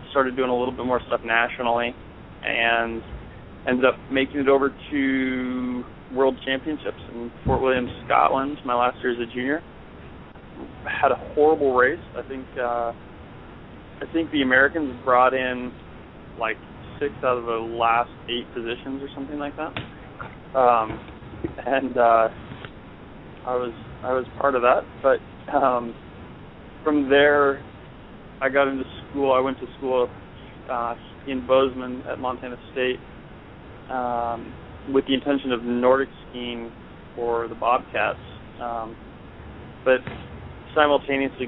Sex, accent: male, American